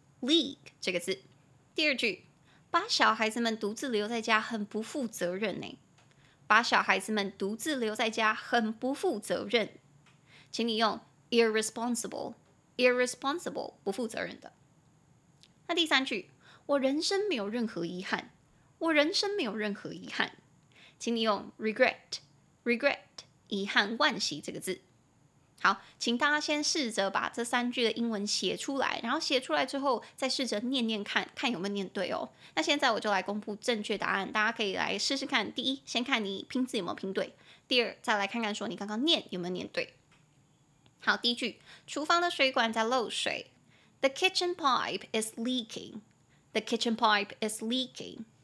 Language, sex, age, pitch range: Chinese, female, 20-39, 205-270 Hz